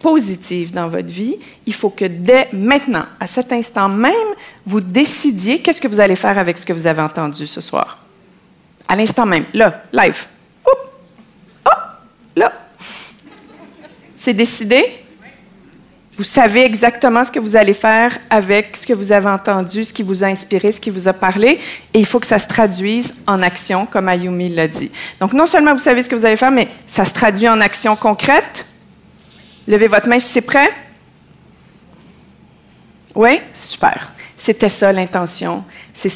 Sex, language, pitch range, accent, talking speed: female, French, 190-230 Hz, Canadian, 175 wpm